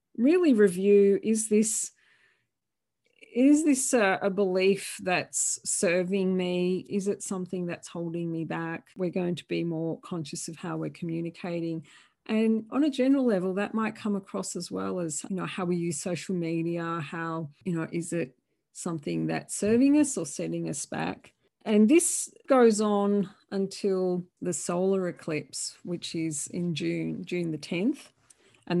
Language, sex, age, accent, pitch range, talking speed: English, female, 40-59, Australian, 170-210 Hz, 160 wpm